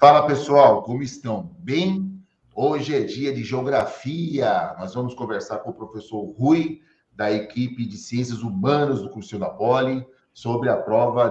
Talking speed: 155 wpm